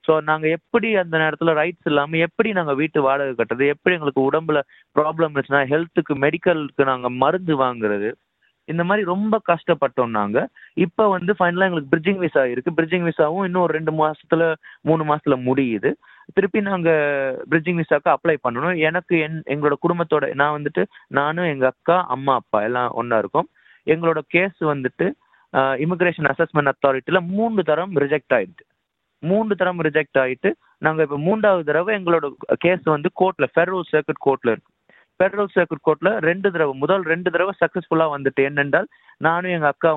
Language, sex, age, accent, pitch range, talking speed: Tamil, male, 30-49, native, 140-180 Hz, 155 wpm